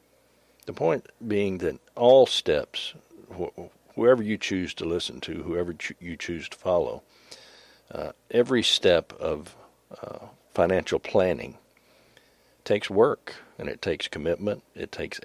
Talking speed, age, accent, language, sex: 125 wpm, 50-69, American, English, male